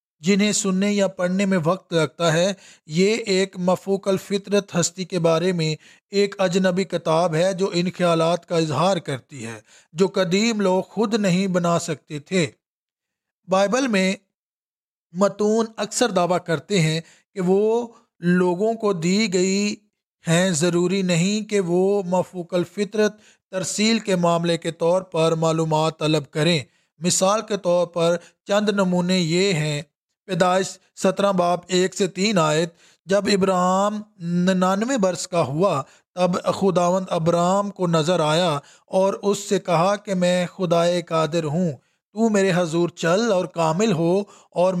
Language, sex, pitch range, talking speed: English, male, 170-195 Hz, 140 wpm